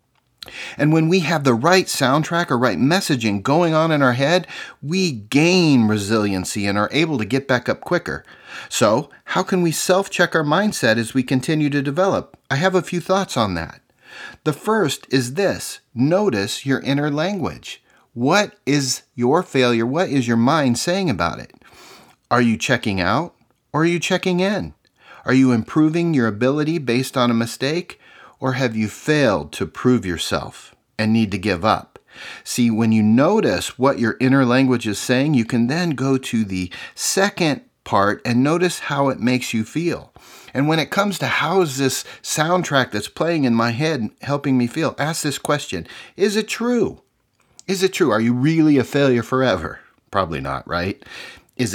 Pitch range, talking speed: 120-165 Hz, 180 wpm